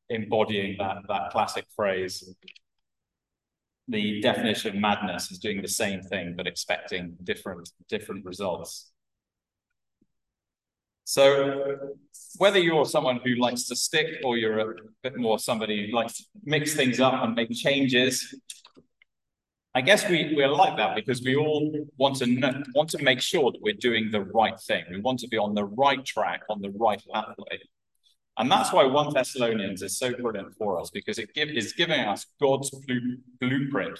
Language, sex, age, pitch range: English, male, 30-49, 105-140 Hz